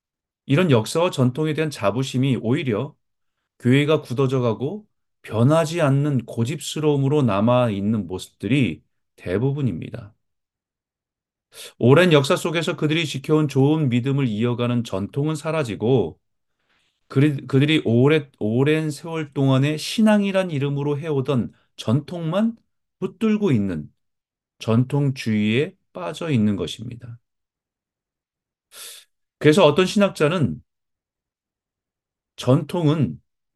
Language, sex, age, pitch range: Korean, male, 40-59, 120-165 Hz